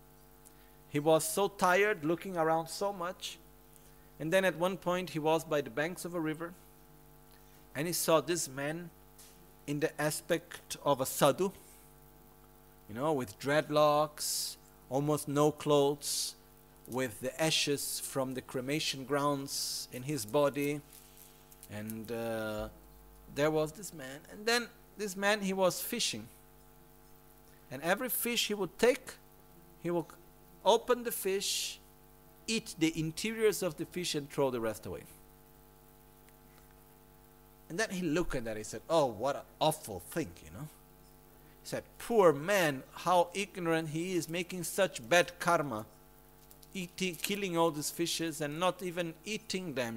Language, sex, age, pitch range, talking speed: Italian, male, 50-69, 130-180 Hz, 145 wpm